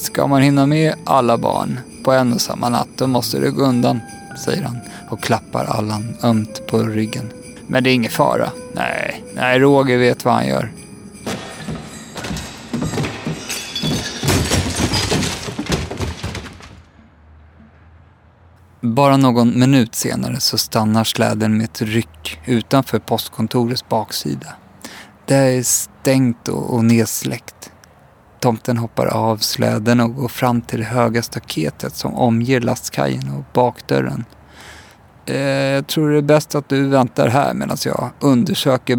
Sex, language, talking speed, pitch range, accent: male, Swedish, 125 wpm, 110-130 Hz, native